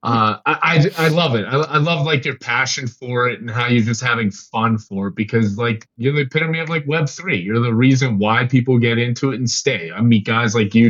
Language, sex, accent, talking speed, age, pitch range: English, male, American, 255 wpm, 20-39, 105-130 Hz